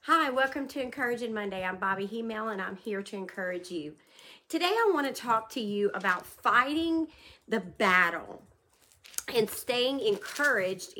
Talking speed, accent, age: 145 wpm, American, 40-59